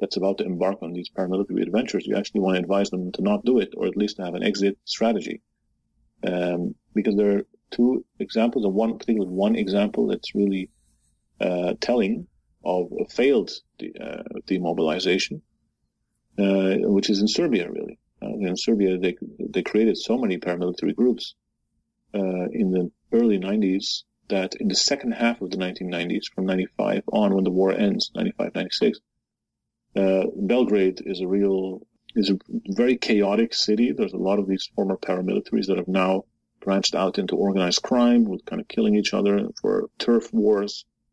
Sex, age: male, 30-49